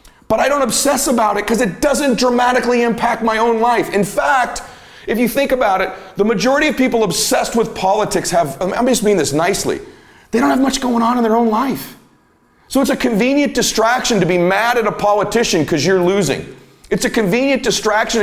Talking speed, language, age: 205 wpm, English, 40-59